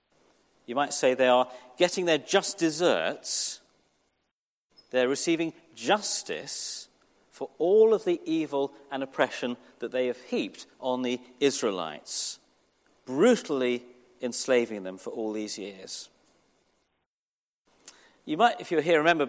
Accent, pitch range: British, 140-235 Hz